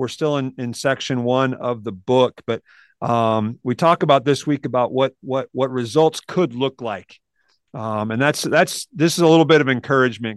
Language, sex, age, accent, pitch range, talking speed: English, male, 40-59, American, 120-145 Hz, 205 wpm